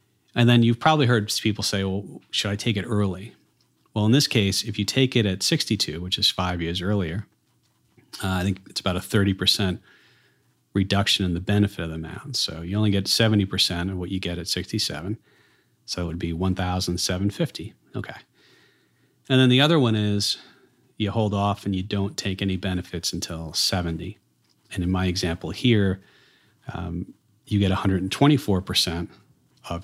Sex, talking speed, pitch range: male, 175 wpm, 90-110 Hz